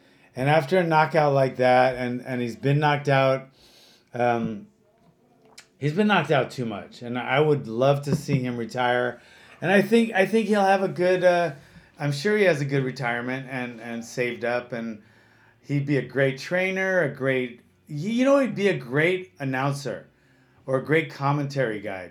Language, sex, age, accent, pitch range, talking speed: English, male, 30-49, American, 135-185 Hz, 185 wpm